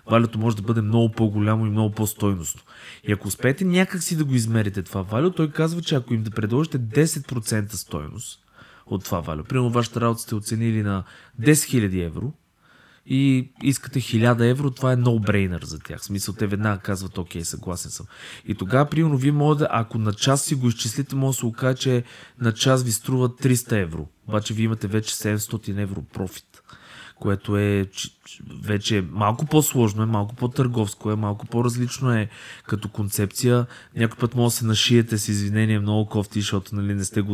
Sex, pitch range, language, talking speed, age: male, 100-120 Hz, Bulgarian, 185 wpm, 20-39